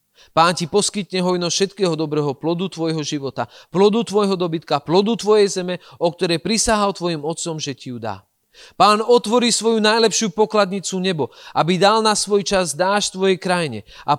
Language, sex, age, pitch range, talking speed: Slovak, male, 40-59, 155-210 Hz, 165 wpm